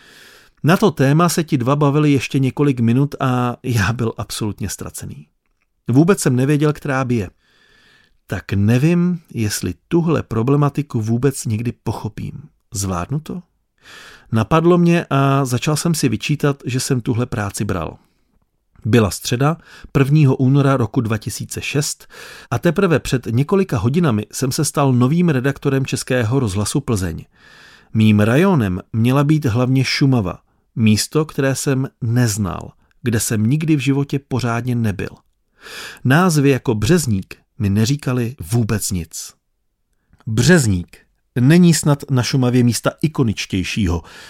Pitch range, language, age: 115-145 Hz, Czech, 40-59